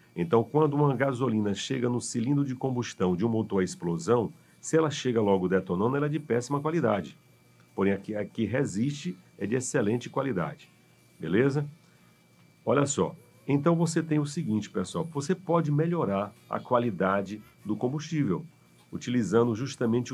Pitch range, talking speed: 100-155 Hz, 155 wpm